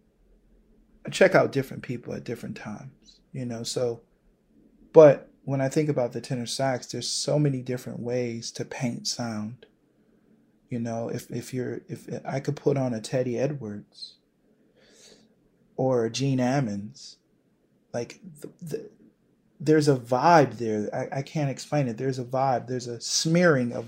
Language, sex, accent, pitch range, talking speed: English, male, American, 120-140 Hz, 155 wpm